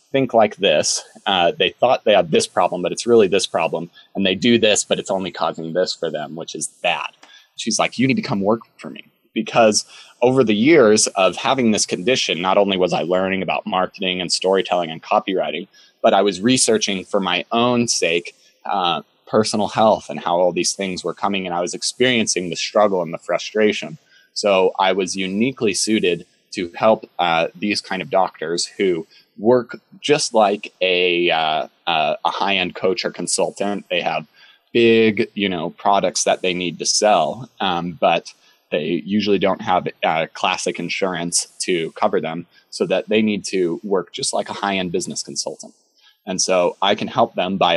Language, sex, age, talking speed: English, male, 20-39, 190 wpm